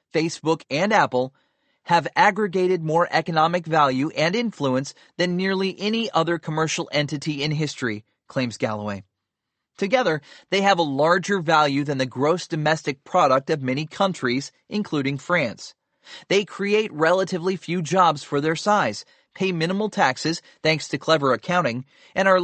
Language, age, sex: English, 30-49, male